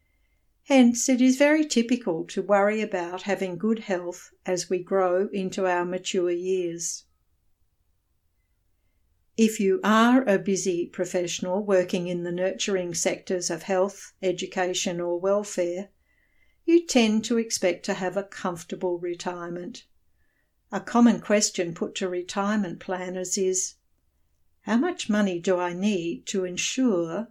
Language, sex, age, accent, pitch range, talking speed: English, female, 60-79, Australian, 175-200 Hz, 130 wpm